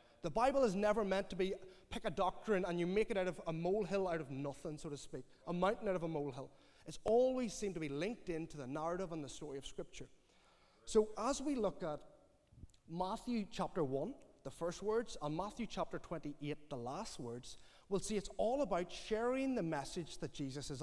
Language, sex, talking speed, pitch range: English, male, 210 wpm, 155-220 Hz